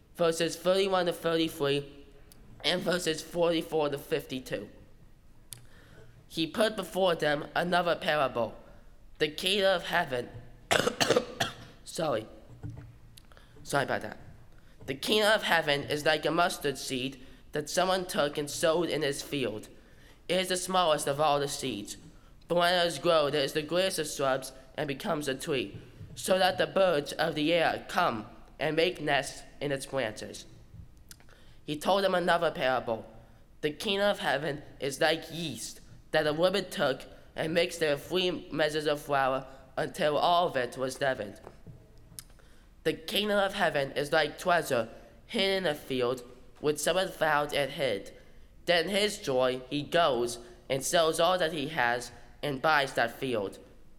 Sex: male